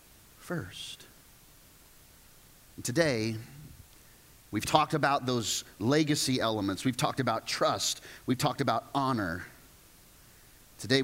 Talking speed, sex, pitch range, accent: 90 wpm, male, 115-165 Hz, American